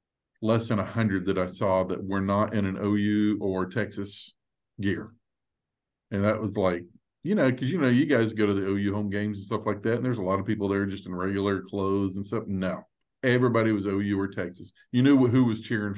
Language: English